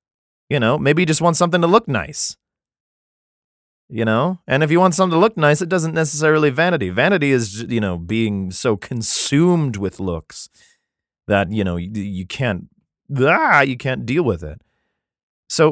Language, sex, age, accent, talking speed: English, male, 30-49, American, 170 wpm